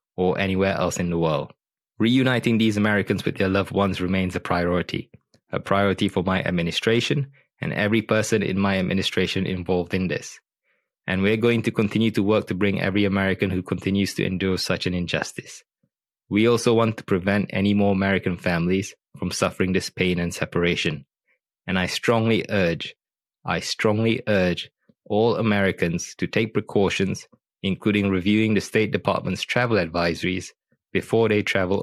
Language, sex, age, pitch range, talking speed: English, male, 20-39, 90-105 Hz, 160 wpm